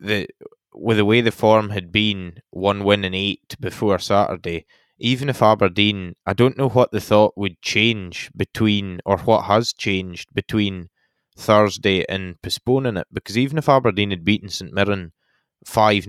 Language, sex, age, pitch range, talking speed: English, male, 20-39, 95-110 Hz, 165 wpm